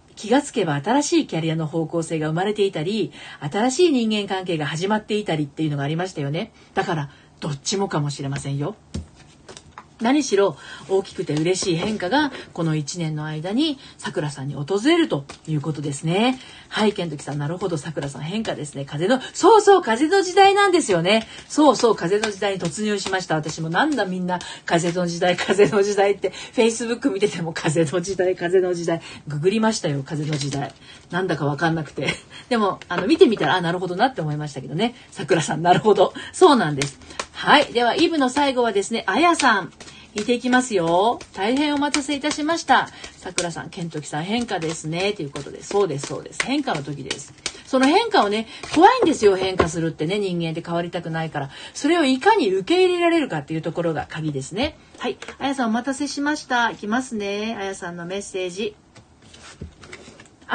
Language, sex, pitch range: Japanese, female, 165-245 Hz